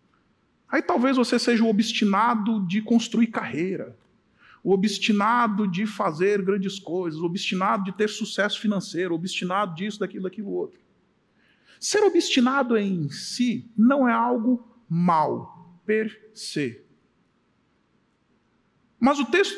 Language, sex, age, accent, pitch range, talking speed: Italian, male, 40-59, Brazilian, 185-230 Hz, 125 wpm